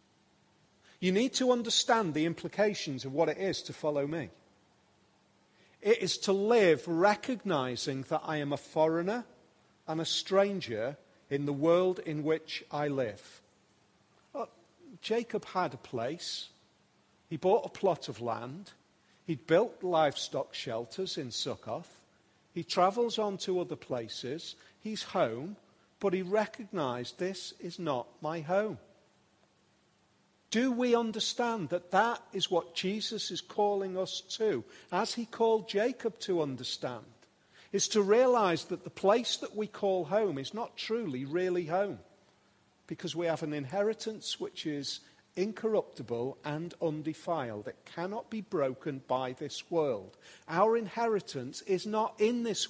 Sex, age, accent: male, 40-59, British